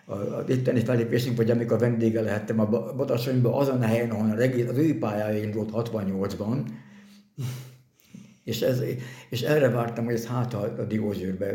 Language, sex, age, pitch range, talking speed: Hungarian, male, 60-79, 105-120 Hz, 175 wpm